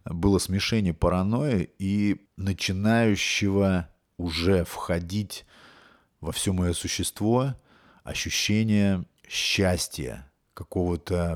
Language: Russian